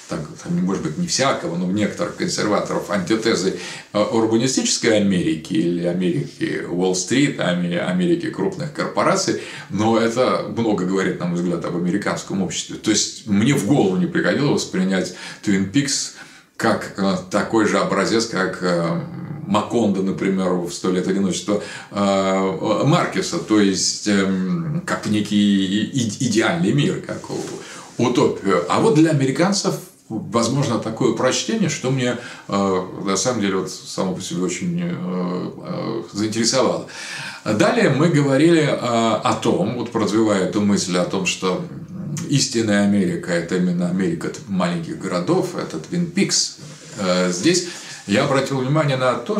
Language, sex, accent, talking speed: Russian, male, native, 125 wpm